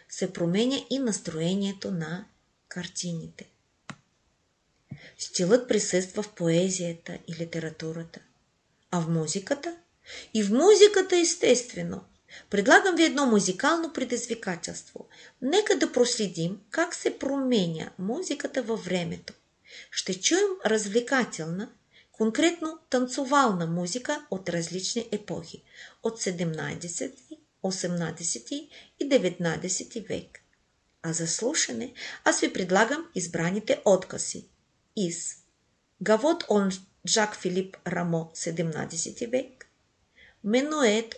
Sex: female